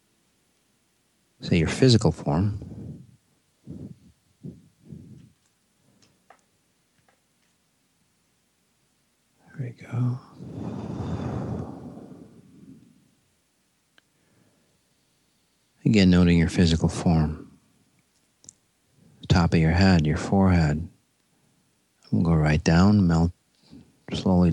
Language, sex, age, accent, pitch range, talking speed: English, male, 50-69, American, 85-110 Hz, 70 wpm